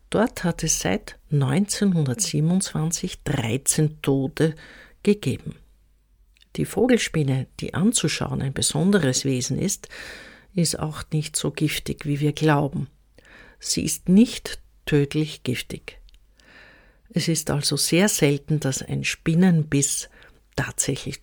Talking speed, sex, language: 105 wpm, female, German